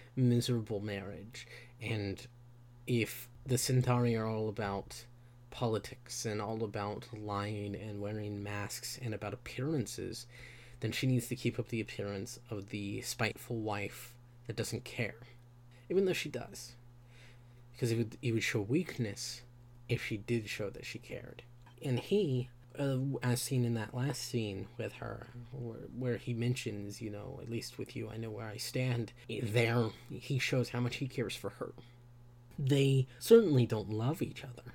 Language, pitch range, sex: English, 115-125 Hz, male